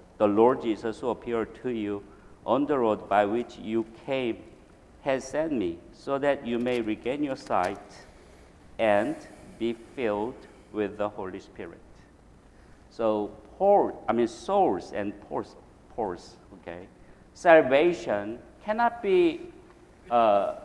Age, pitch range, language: 50-69, 115-165 Hz, English